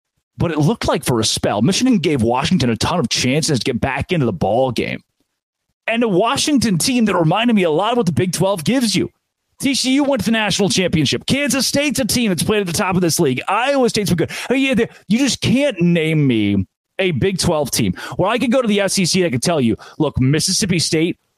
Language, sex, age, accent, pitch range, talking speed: English, male, 30-49, American, 145-225 Hz, 240 wpm